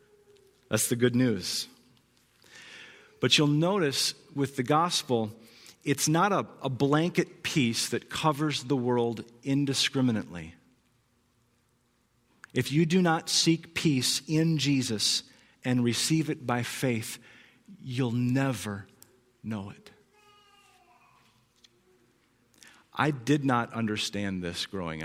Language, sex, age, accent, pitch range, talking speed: English, male, 40-59, American, 110-155 Hz, 105 wpm